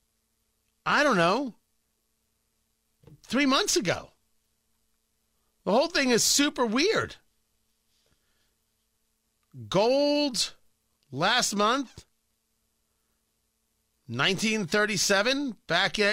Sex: male